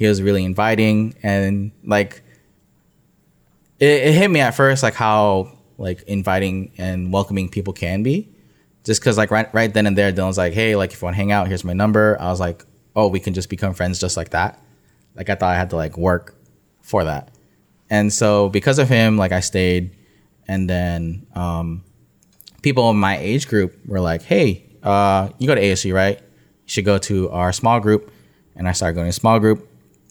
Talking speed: 205 wpm